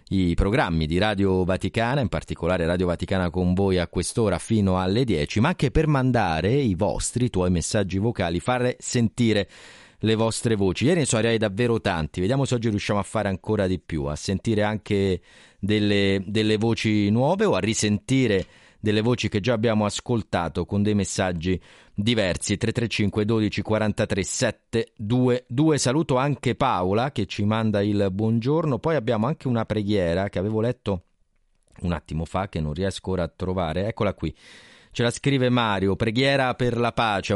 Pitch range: 95-120 Hz